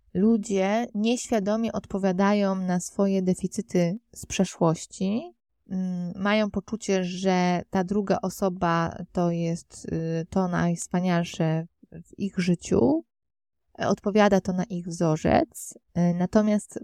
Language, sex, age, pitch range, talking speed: Polish, female, 20-39, 170-200 Hz, 95 wpm